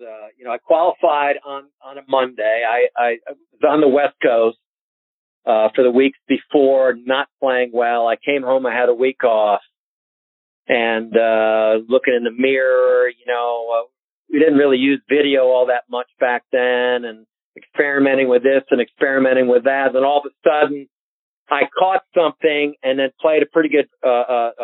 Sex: male